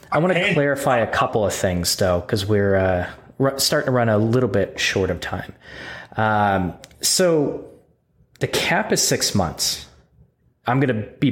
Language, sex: English, male